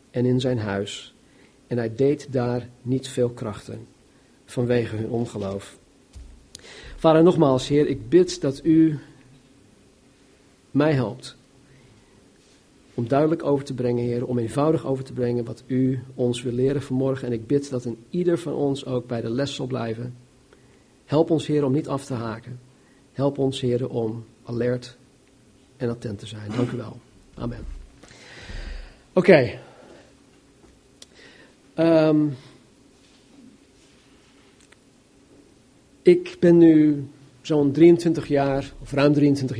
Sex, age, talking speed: male, 50-69, 130 wpm